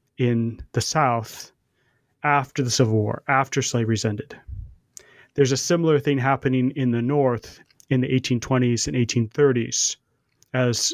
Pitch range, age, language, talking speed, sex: 120-135 Hz, 30-49, English, 130 wpm, male